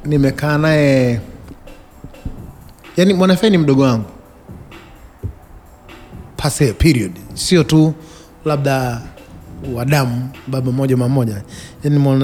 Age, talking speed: 30-49, 85 wpm